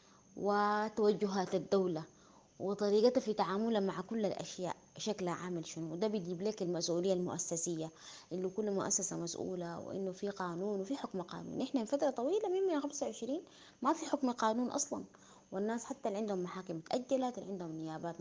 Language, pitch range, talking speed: English, 185-235 Hz, 150 wpm